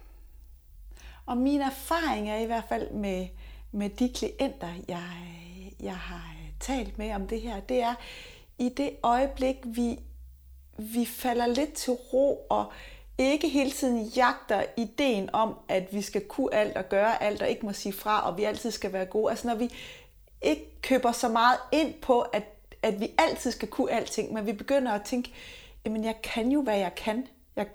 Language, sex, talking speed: Danish, female, 185 wpm